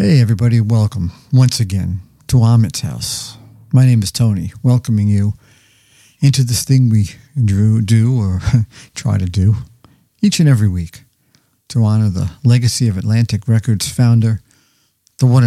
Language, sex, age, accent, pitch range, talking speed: English, male, 50-69, American, 105-130 Hz, 145 wpm